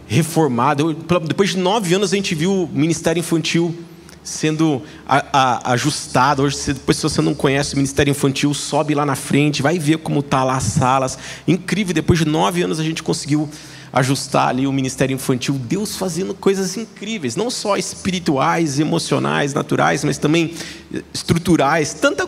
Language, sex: Portuguese, male